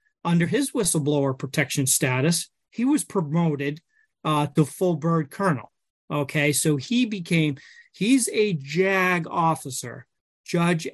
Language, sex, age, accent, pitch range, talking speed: English, male, 30-49, American, 135-165 Hz, 120 wpm